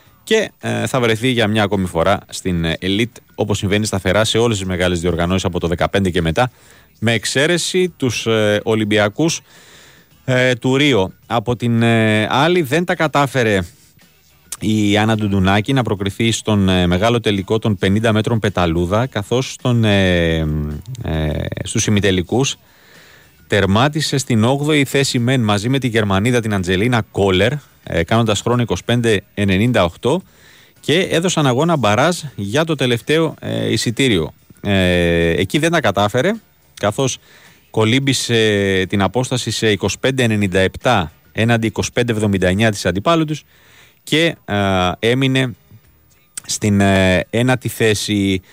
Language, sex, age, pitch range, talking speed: Greek, male, 30-49, 95-130 Hz, 125 wpm